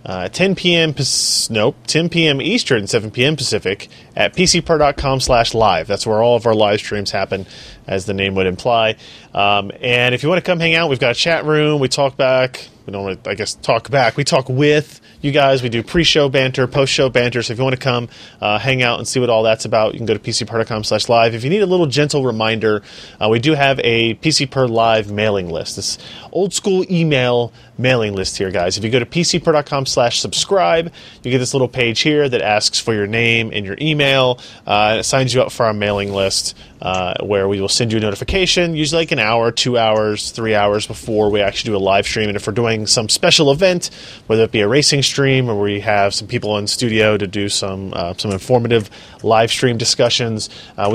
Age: 30-49